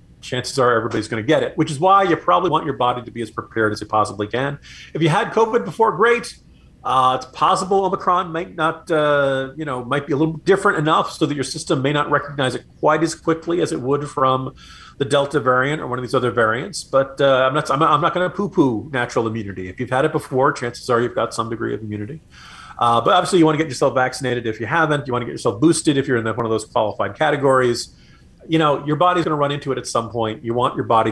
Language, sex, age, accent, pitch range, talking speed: English, male, 40-59, American, 110-150 Hz, 255 wpm